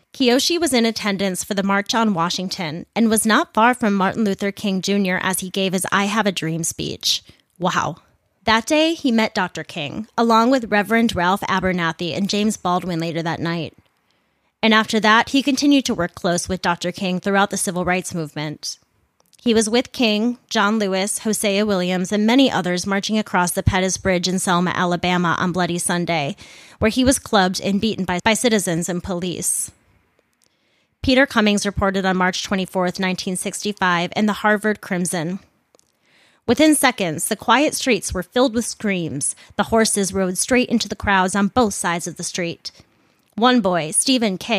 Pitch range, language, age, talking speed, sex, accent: 180-220 Hz, English, 20-39, 175 wpm, female, American